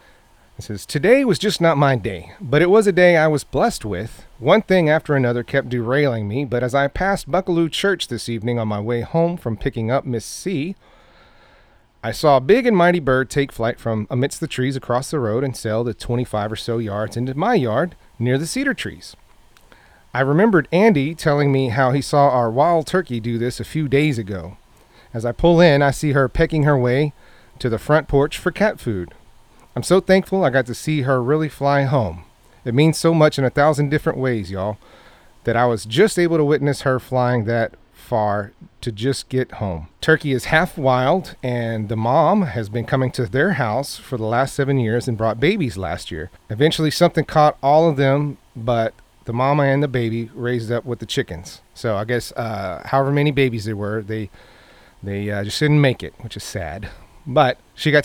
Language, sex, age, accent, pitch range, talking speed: English, male, 30-49, American, 115-150 Hz, 210 wpm